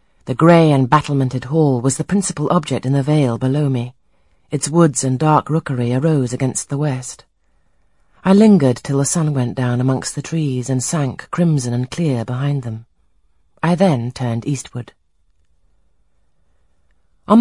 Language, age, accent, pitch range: Chinese, 40-59, British, 125-160 Hz